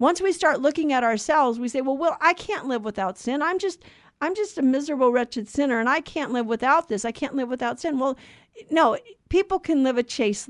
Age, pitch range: 50-69, 230-290 Hz